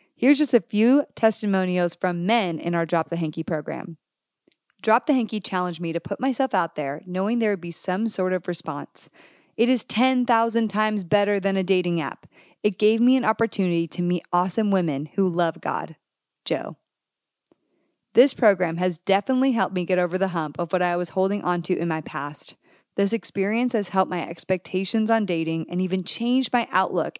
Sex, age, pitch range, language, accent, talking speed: female, 30-49, 175-230 Hz, English, American, 190 wpm